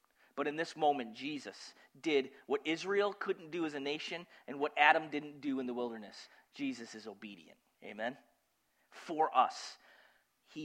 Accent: American